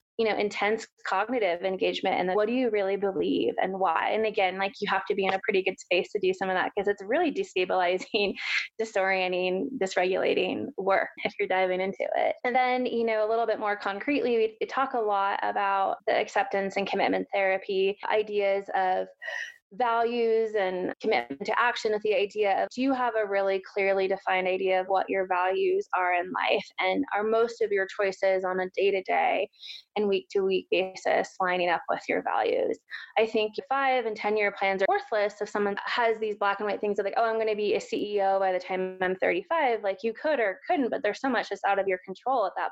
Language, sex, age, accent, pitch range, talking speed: English, female, 20-39, American, 190-230 Hz, 215 wpm